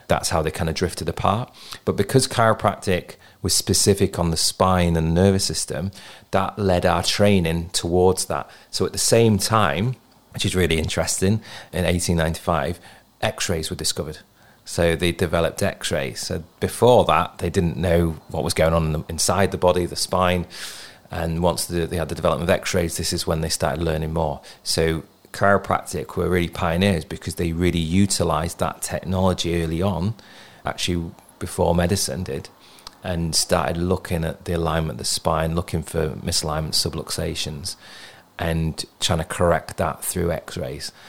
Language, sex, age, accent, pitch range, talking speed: English, male, 30-49, British, 80-95 Hz, 165 wpm